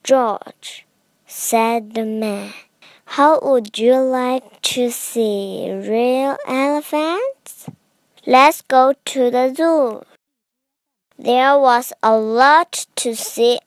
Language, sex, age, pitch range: Chinese, male, 20-39, 225-270 Hz